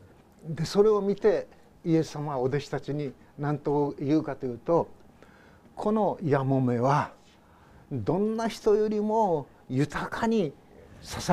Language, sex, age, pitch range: Japanese, male, 50-69, 125-175 Hz